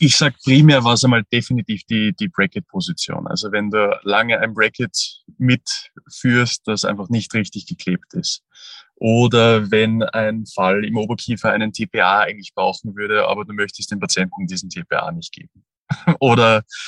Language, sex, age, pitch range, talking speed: German, male, 20-39, 105-135 Hz, 155 wpm